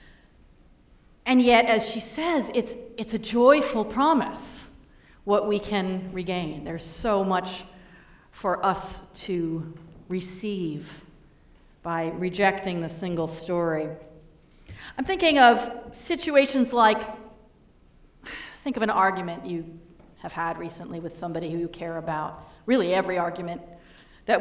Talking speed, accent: 120 wpm, American